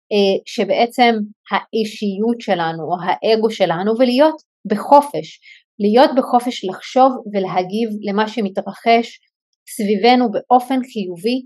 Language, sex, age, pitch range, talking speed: Hebrew, female, 30-49, 200-250 Hz, 90 wpm